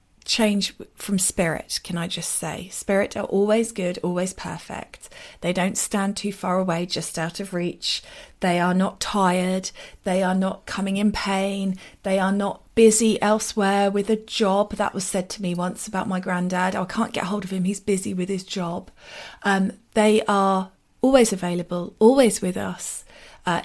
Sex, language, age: female, English, 40-59